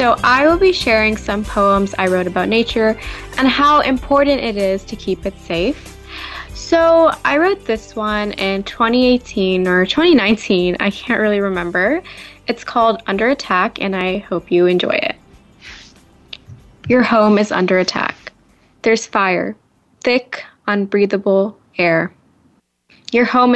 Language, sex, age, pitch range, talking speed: English, female, 10-29, 185-230 Hz, 140 wpm